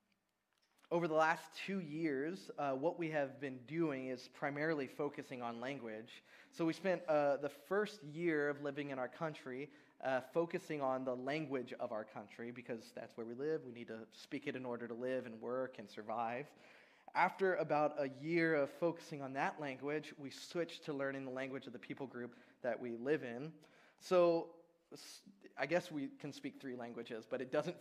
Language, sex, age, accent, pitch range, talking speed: English, male, 20-39, American, 135-170 Hz, 190 wpm